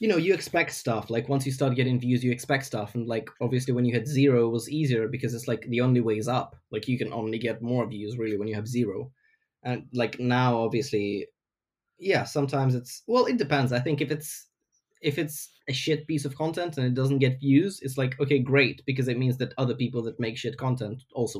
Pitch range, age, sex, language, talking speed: 120-140 Hz, 20-39, male, English, 240 wpm